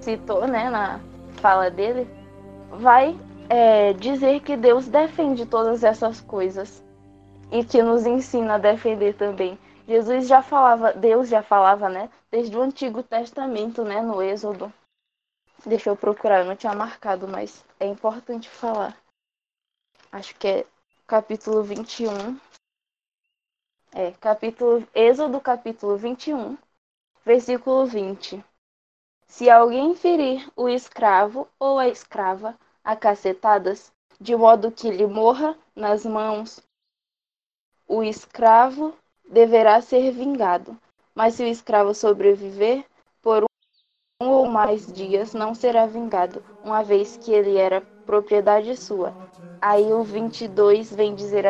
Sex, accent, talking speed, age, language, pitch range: female, Brazilian, 120 wpm, 10-29, Portuguese, 205-240 Hz